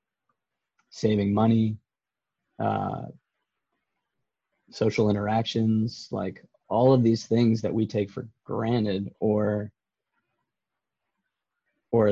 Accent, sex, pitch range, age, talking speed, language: American, male, 100-125 Hz, 30-49, 85 wpm, English